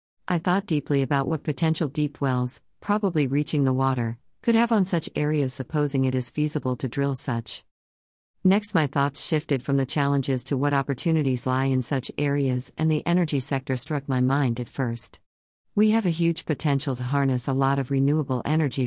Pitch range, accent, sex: 130-150 Hz, American, female